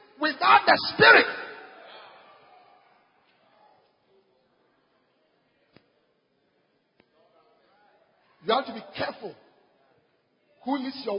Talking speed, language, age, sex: 60 wpm, English, 40-59, male